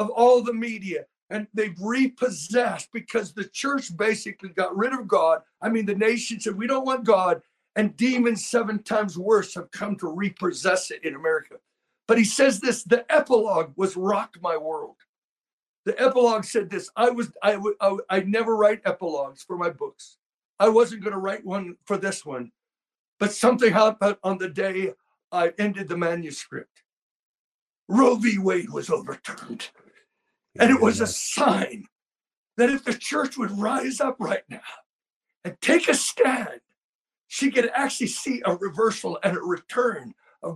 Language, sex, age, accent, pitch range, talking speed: English, male, 60-79, American, 200-255 Hz, 170 wpm